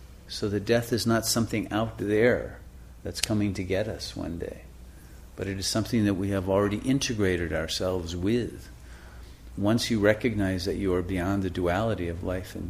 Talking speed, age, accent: 180 wpm, 50-69, American